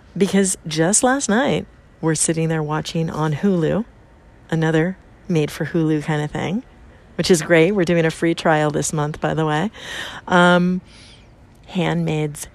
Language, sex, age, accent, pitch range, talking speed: English, female, 40-59, American, 145-180 Hz, 145 wpm